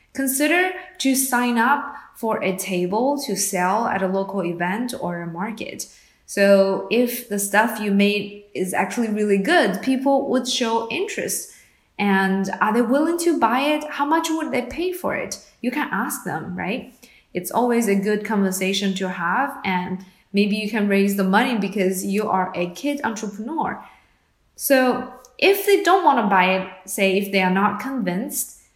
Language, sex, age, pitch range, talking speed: English, female, 20-39, 190-260 Hz, 175 wpm